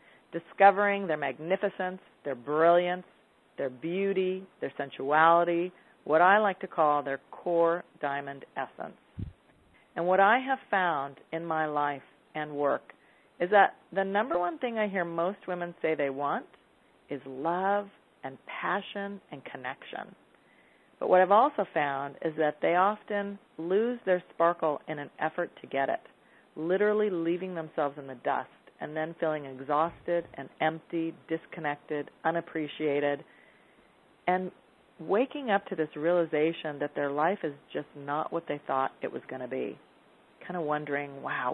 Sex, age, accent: female, 40-59, American